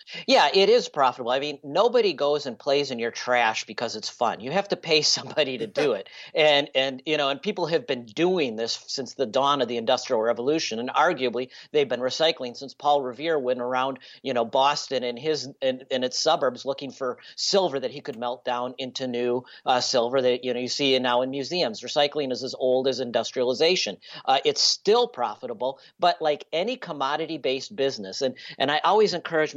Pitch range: 125-155 Hz